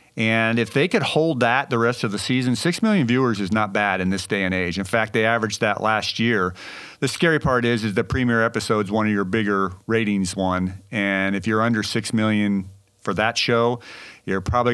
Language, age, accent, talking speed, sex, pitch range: English, 40-59, American, 220 wpm, male, 105-125 Hz